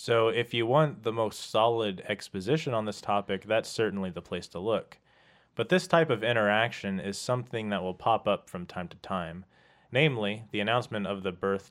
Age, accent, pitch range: 30-49, American, 95-120 Hz